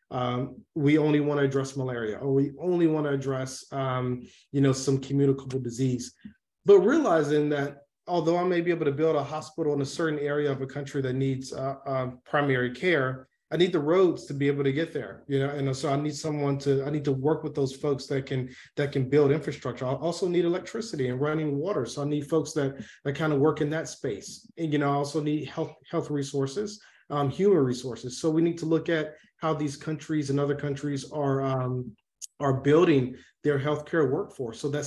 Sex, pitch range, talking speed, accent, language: male, 135-160 Hz, 220 wpm, American, English